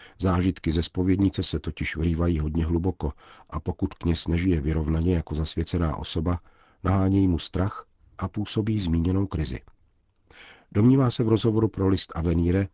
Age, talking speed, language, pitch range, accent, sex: 50-69, 140 wpm, Czech, 75-90 Hz, native, male